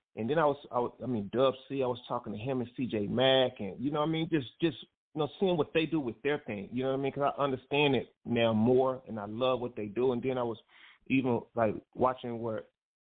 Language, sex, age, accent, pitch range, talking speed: English, male, 30-49, American, 115-135 Hz, 280 wpm